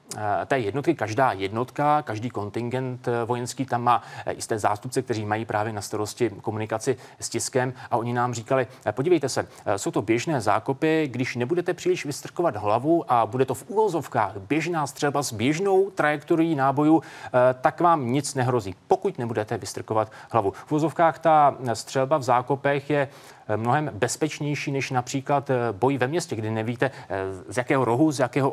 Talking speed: 155 wpm